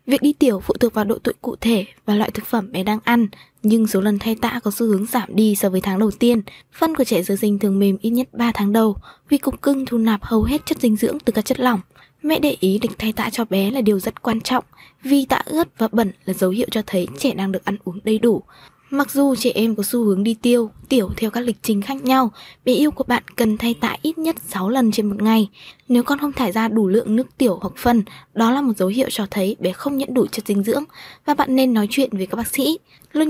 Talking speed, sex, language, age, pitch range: 275 wpm, female, Vietnamese, 20-39, 210-255 Hz